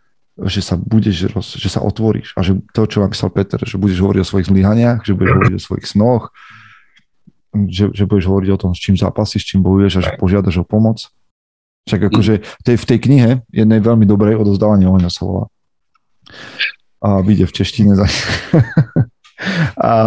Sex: male